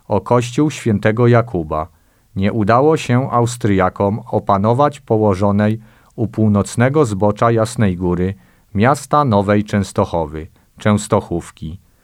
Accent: native